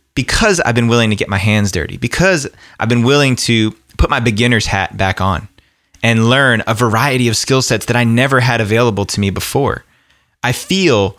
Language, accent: English, American